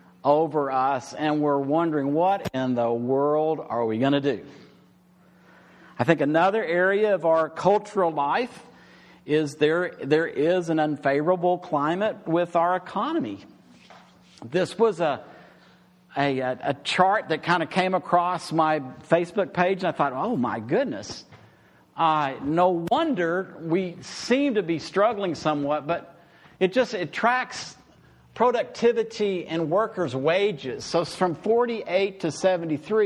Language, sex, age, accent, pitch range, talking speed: English, male, 50-69, American, 160-205 Hz, 140 wpm